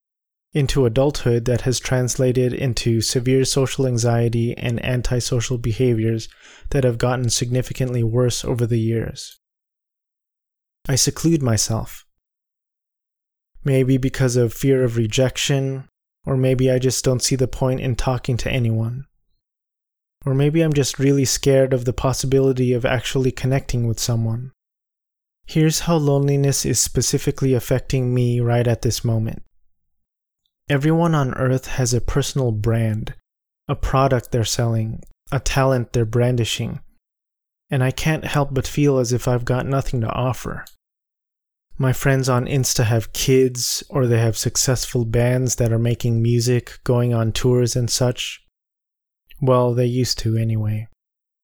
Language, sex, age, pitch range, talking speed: English, male, 20-39, 120-135 Hz, 140 wpm